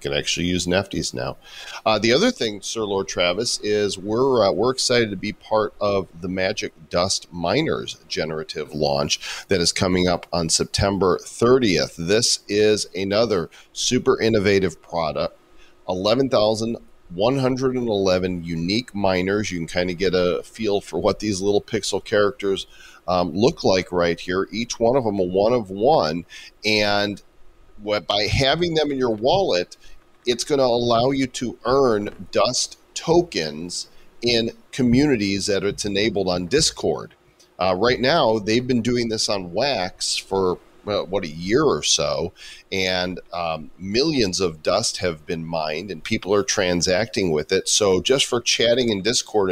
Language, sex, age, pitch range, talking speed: English, male, 40-59, 90-115 Hz, 155 wpm